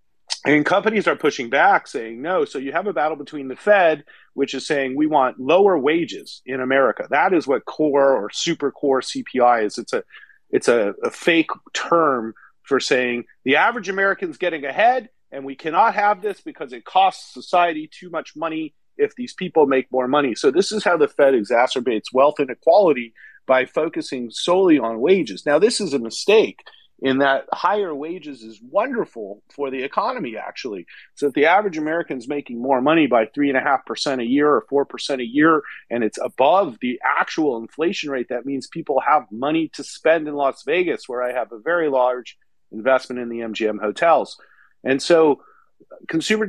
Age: 40-59